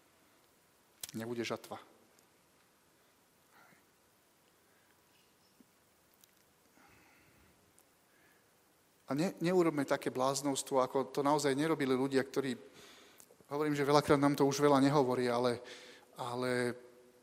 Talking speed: 80 wpm